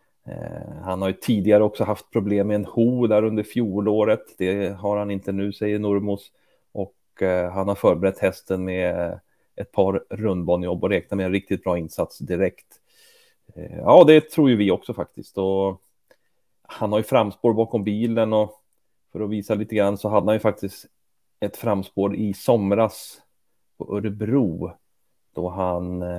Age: 30-49